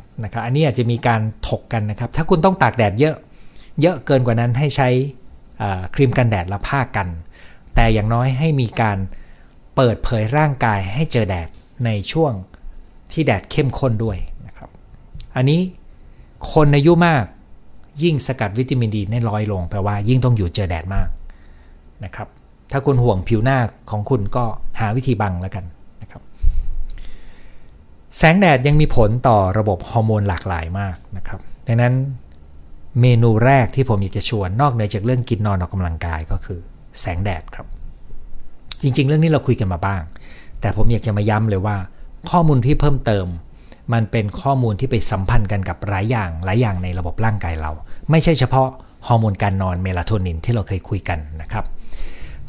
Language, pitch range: Thai, 95-130 Hz